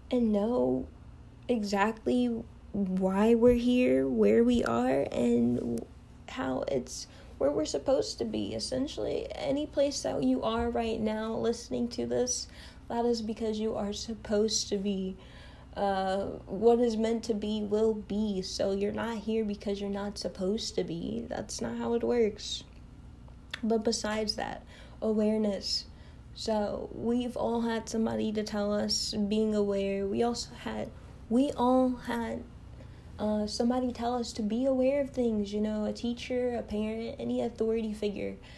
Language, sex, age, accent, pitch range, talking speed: English, female, 10-29, American, 200-235 Hz, 150 wpm